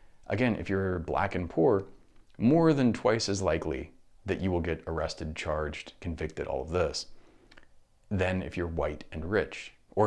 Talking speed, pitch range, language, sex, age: 165 wpm, 80-110 Hz, English, male, 30-49